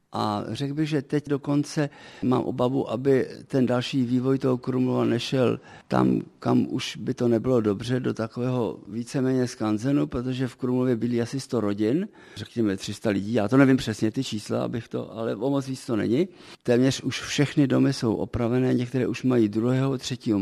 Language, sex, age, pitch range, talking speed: Czech, male, 50-69, 115-140 Hz, 180 wpm